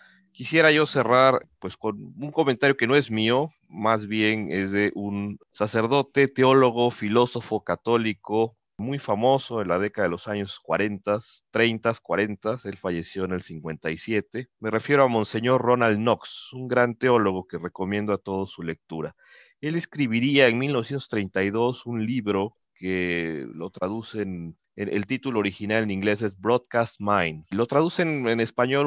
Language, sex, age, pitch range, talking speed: Spanish, male, 40-59, 105-135 Hz, 150 wpm